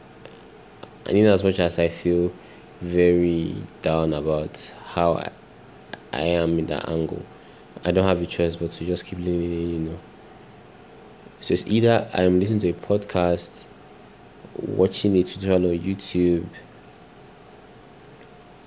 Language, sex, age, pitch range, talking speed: English, male, 20-39, 85-95 Hz, 145 wpm